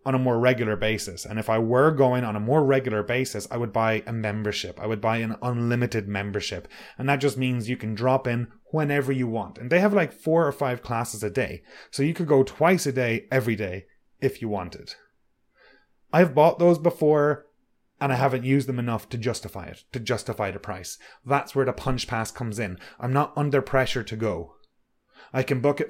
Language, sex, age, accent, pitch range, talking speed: English, male, 30-49, Irish, 110-140 Hz, 215 wpm